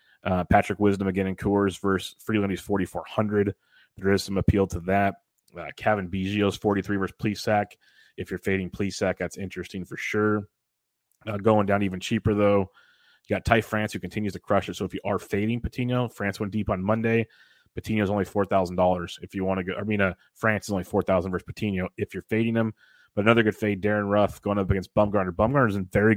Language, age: English, 30-49